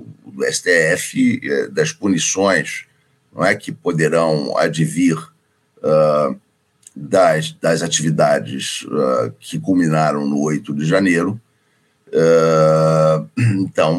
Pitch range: 80-115 Hz